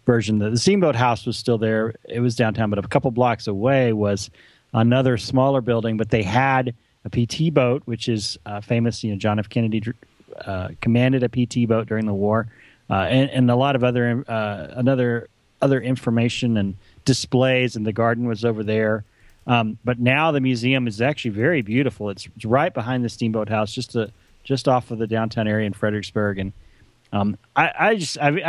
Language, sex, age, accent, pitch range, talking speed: English, male, 30-49, American, 110-135 Hz, 200 wpm